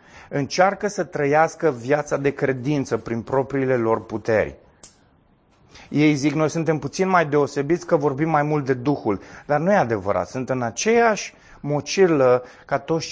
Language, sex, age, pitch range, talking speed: Romanian, male, 30-49, 125-175 Hz, 150 wpm